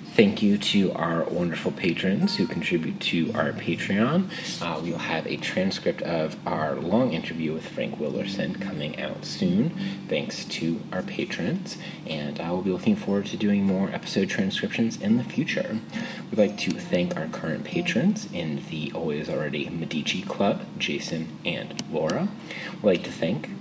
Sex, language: male, English